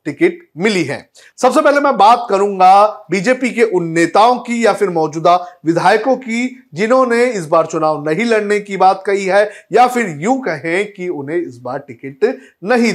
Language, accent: Hindi, native